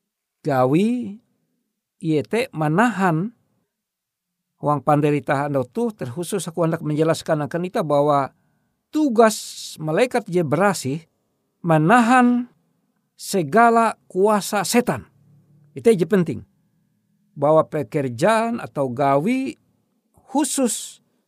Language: Indonesian